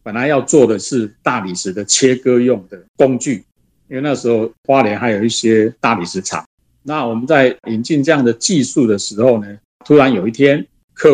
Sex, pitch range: male, 110-135 Hz